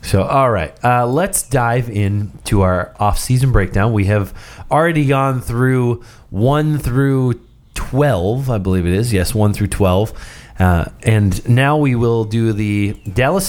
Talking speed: 150 wpm